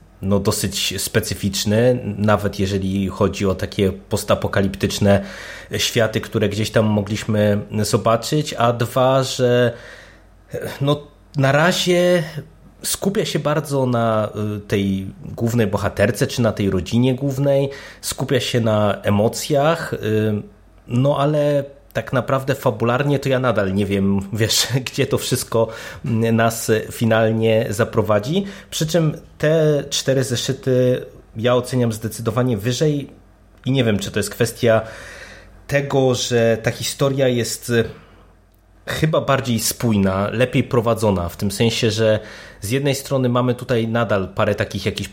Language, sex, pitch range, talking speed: Polish, male, 105-130 Hz, 120 wpm